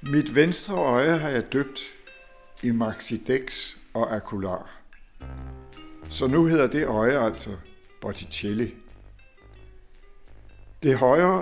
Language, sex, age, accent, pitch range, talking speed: Danish, male, 60-79, native, 100-145 Hz, 100 wpm